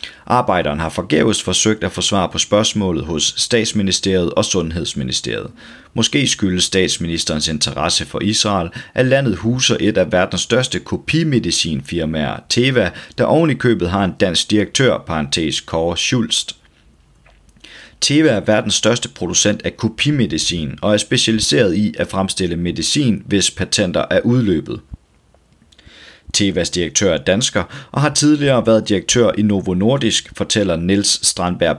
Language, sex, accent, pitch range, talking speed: Danish, male, native, 85-110 Hz, 130 wpm